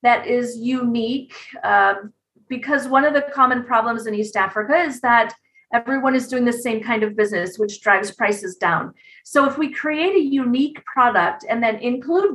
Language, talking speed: English, 180 wpm